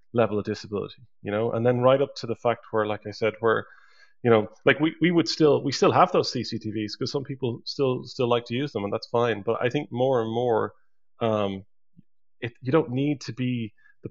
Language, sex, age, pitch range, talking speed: English, male, 20-39, 110-125 Hz, 235 wpm